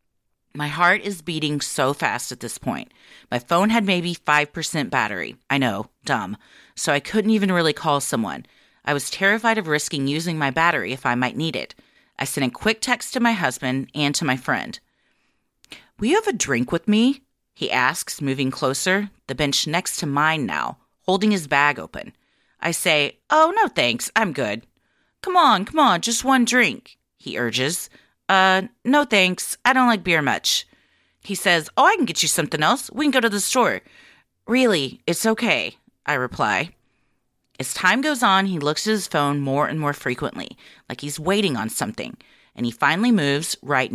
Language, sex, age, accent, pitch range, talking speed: English, female, 30-49, American, 145-225 Hz, 190 wpm